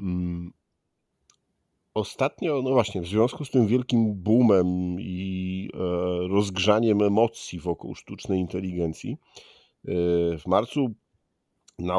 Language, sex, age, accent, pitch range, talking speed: Polish, male, 50-69, native, 90-115 Hz, 90 wpm